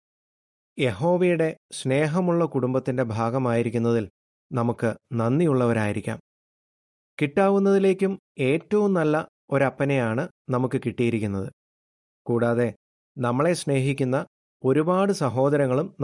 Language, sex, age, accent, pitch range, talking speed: Malayalam, male, 30-49, native, 120-155 Hz, 65 wpm